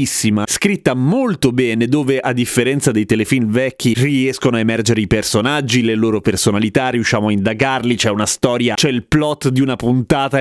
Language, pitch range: Italian, 120-170 Hz